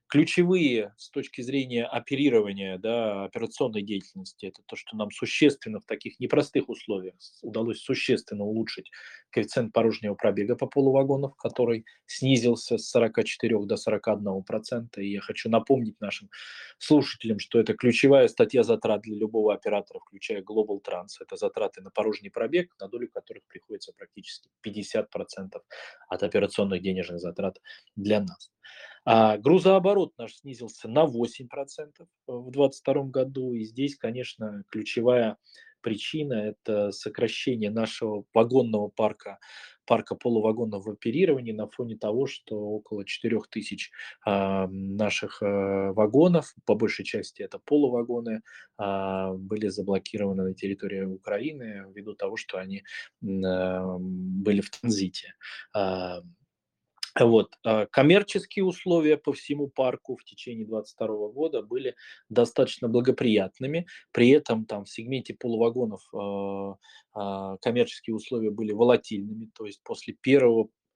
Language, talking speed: Russian, 125 wpm